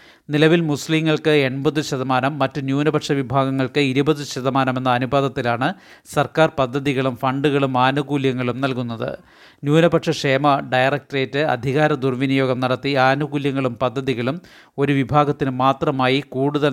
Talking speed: 95 wpm